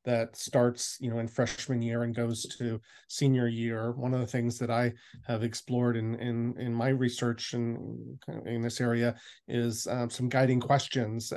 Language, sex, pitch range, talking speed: English, male, 115-125 Hz, 180 wpm